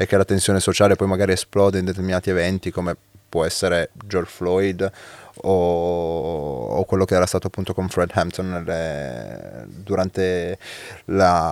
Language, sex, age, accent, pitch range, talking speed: Italian, male, 20-39, native, 90-105 Hz, 145 wpm